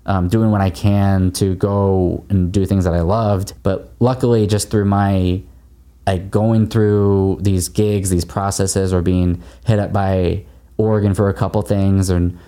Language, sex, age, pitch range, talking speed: English, male, 20-39, 90-105 Hz, 175 wpm